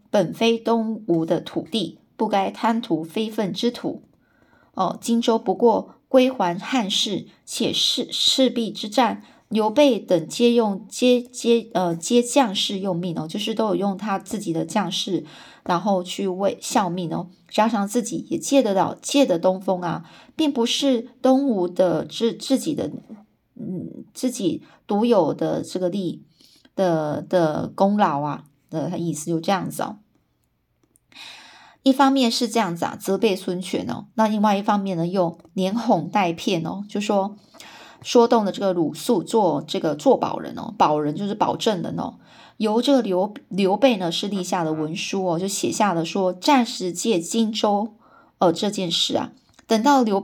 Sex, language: female, Chinese